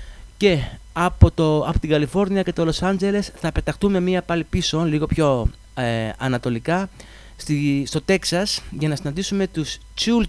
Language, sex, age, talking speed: English, male, 30-49, 155 wpm